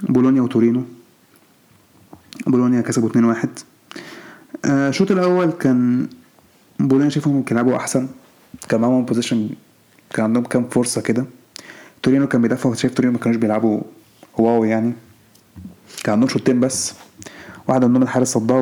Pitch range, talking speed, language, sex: 120-145 Hz, 130 wpm, Arabic, male